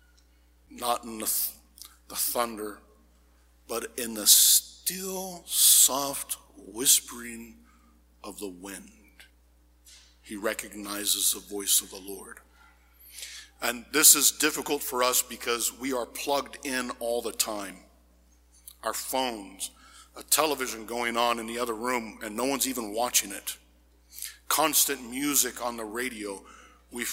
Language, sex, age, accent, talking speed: English, male, 50-69, American, 125 wpm